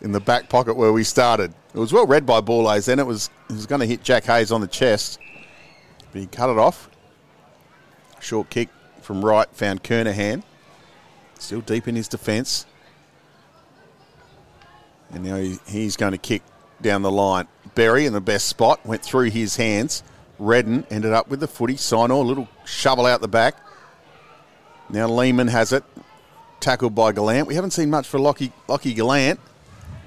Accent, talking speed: Australian, 180 wpm